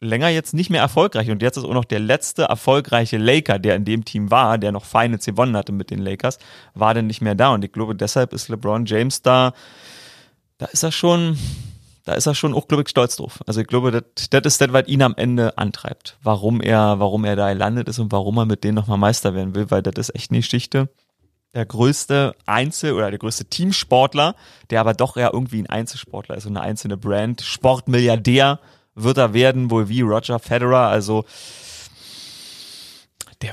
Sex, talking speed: male, 200 wpm